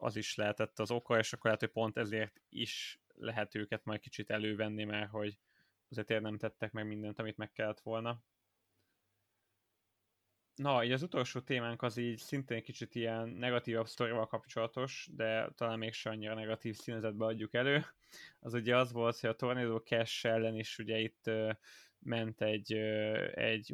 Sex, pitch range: male, 110-125 Hz